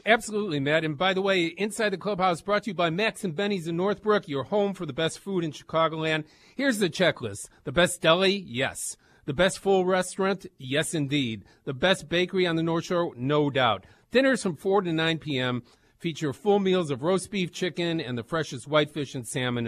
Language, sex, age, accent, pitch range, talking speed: English, male, 50-69, American, 130-180 Hz, 205 wpm